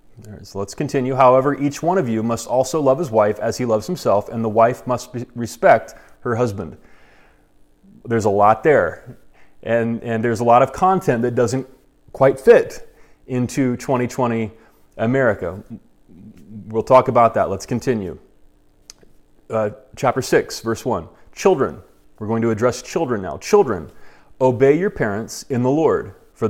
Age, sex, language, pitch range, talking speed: 30-49, male, English, 110-135 Hz, 155 wpm